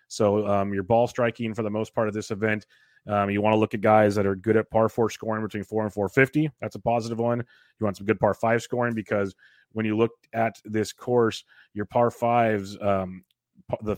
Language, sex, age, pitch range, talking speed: English, male, 30-49, 105-115 Hz, 230 wpm